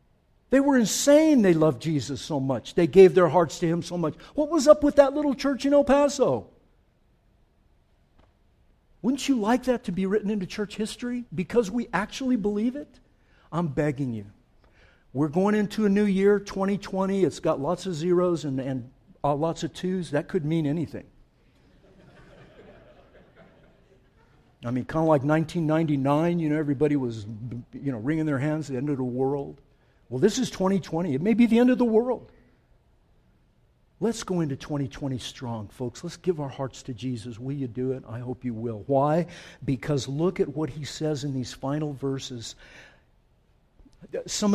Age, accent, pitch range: 60-79, American, 140-200 Hz